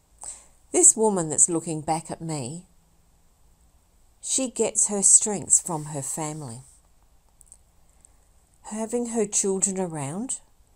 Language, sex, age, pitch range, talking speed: English, female, 50-69, 150-205 Hz, 100 wpm